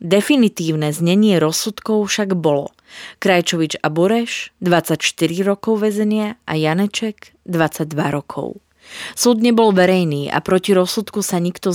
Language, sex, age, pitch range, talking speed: Slovak, female, 30-49, 165-210 Hz, 120 wpm